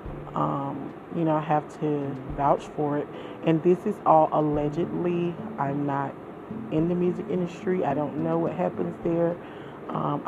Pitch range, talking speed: 155-175 Hz, 160 wpm